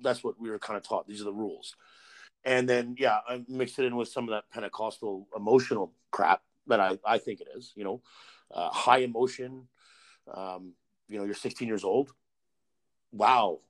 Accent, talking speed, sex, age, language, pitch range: American, 195 wpm, male, 50-69, English, 110-145 Hz